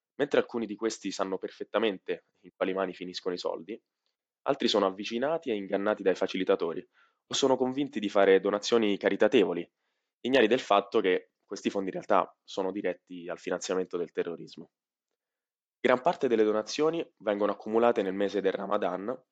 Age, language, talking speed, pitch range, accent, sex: 20-39, Italian, 155 wpm, 95-115 Hz, native, male